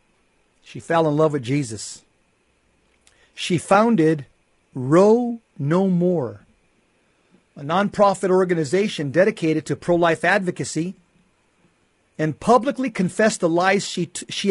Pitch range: 150-190 Hz